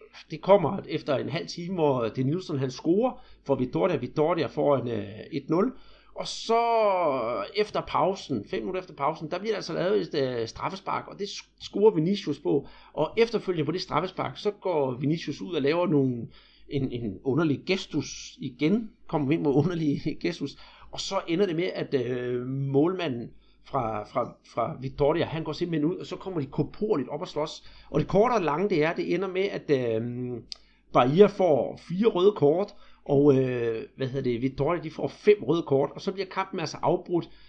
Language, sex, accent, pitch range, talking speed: Danish, male, native, 140-185 Hz, 185 wpm